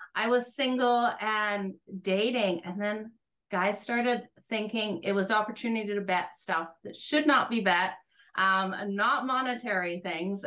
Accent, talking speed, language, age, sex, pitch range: American, 150 wpm, English, 30-49, female, 195-260 Hz